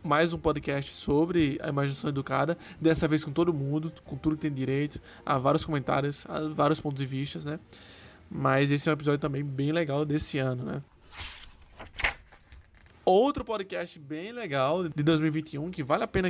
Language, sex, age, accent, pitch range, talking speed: Portuguese, male, 20-39, Brazilian, 135-165 Hz, 175 wpm